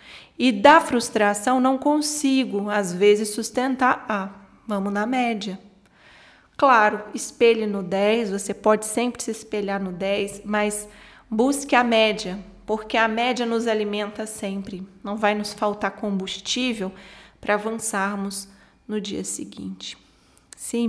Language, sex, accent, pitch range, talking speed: Portuguese, female, Brazilian, 195-220 Hz, 125 wpm